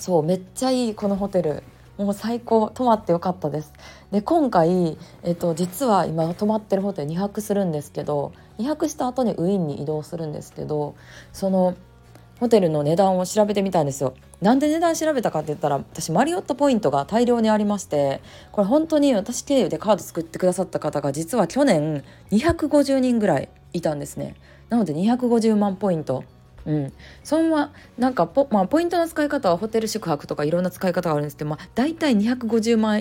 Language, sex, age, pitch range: Japanese, female, 20-39, 155-235 Hz